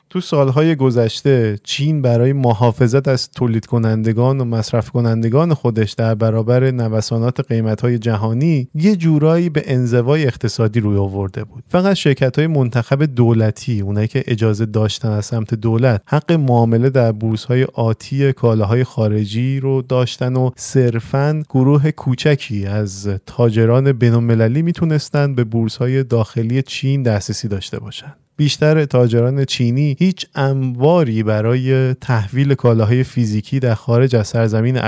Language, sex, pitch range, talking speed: Persian, male, 115-140 Hz, 125 wpm